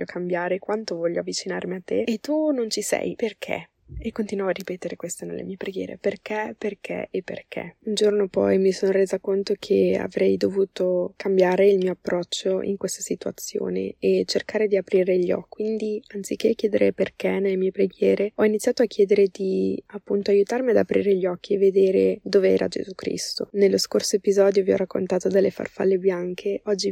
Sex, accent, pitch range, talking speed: female, native, 180-205 Hz, 180 wpm